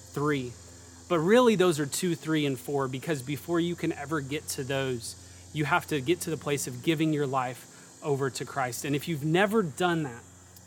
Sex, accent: male, American